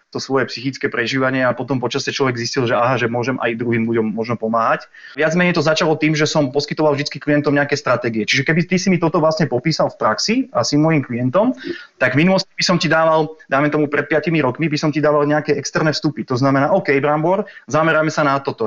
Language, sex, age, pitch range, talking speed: Slovak, male, 30-49, 130-155 Hz, 220 wpm